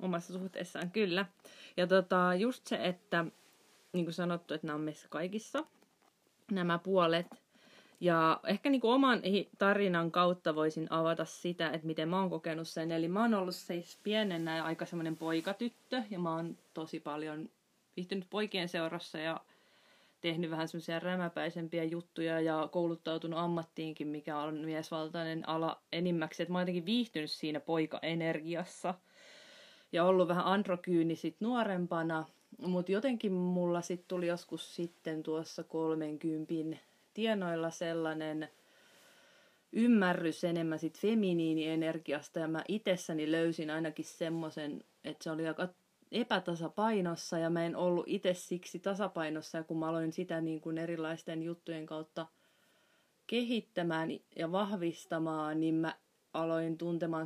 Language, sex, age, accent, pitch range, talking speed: Finnish, female, 30-49, native, 160-185 Hz, 130 wpm